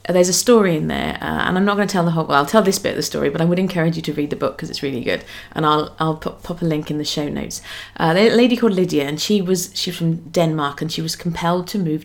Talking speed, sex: 320 wpm, female